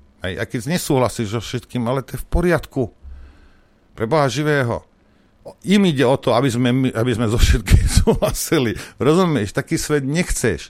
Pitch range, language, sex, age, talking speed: 90-125 Hz, Slovak, male, 50-69, 155 wpm